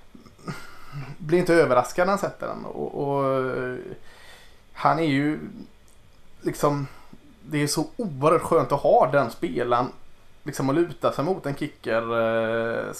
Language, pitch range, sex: Swedish, 115-140 Hz, male